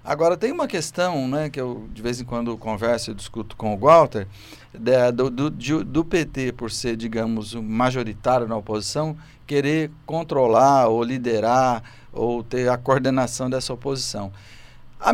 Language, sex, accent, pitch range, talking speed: Portuguese, male, Brazilian, 115-155 Hz, 145 wpm